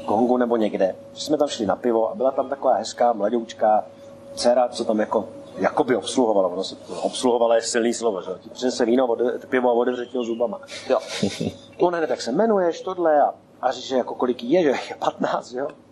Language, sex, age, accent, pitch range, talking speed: Czech, male, 40-59, native, 120-185 Hz, 185 wpm